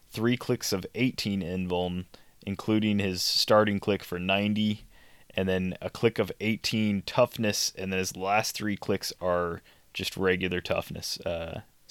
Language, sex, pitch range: English, male, 95-105 Hz